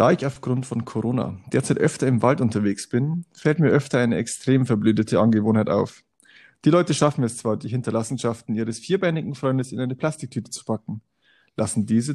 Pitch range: 115-155 Hz